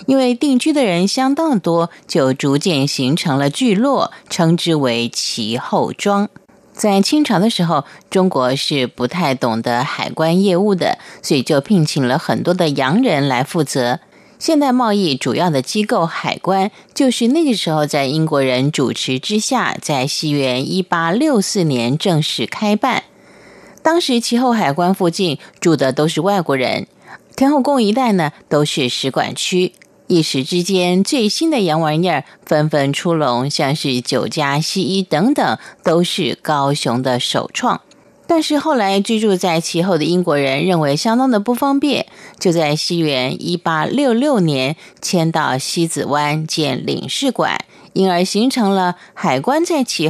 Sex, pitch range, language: female, 145-215 Hz, Chinese